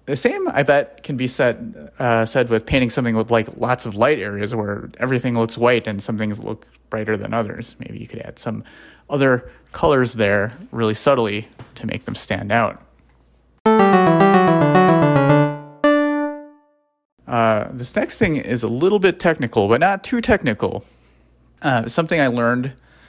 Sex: male